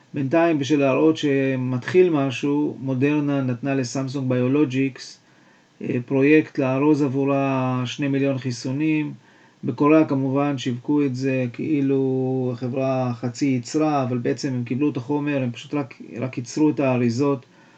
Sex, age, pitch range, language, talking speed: male, 40-59, 130-150 Hz, Hebrew, 120 wpm